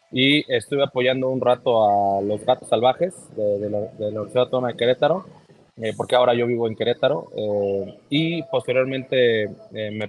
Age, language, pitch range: 20-39, Spanish, 110-130 Hz